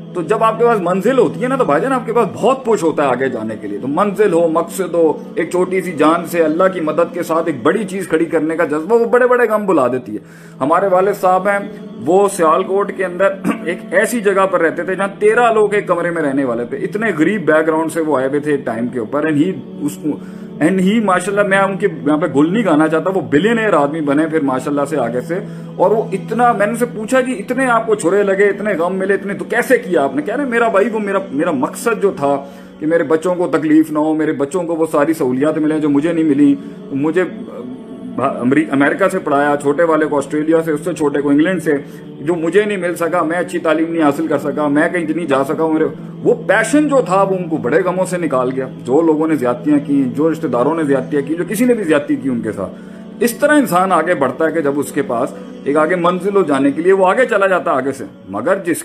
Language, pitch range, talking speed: Urdu, 155-205 Hz, 255 wpm